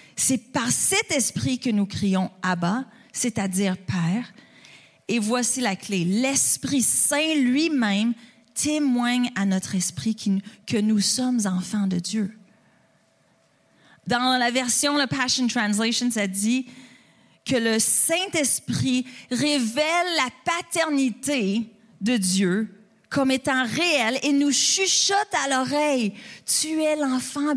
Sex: female